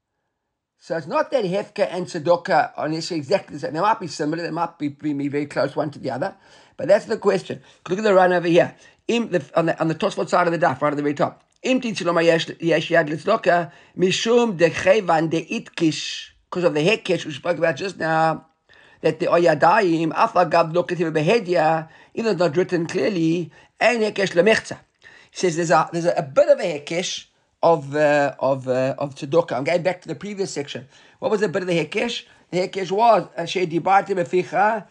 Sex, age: male, 50-69